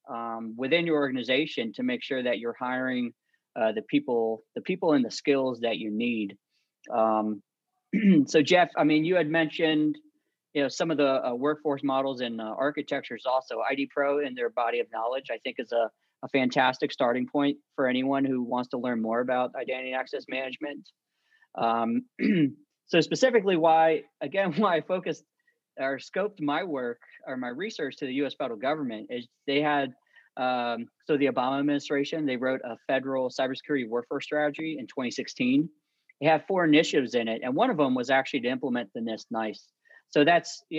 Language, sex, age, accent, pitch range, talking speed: English, male, 30-49, American, 125-160 Hz, 180 wpm